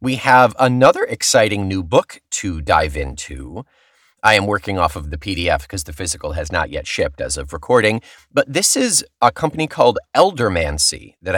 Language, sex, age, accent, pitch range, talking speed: English, male, 30-49, American, 85-135 Hz, 180 wpm